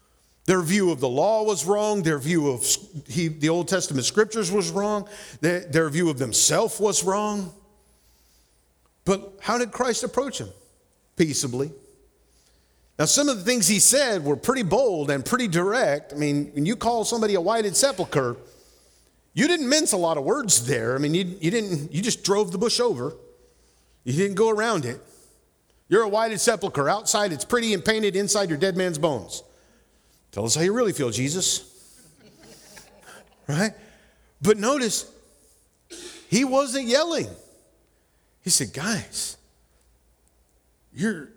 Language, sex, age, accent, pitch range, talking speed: English, male, 50-69, American, 160-235 Hz, 155 wpm